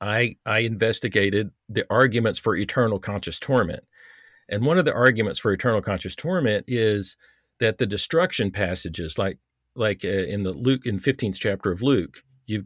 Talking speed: 165 wpm